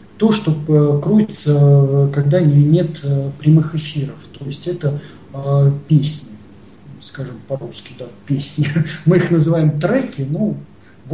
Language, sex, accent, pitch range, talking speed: Russian, male, native, 135-155 Hz, 115 wpm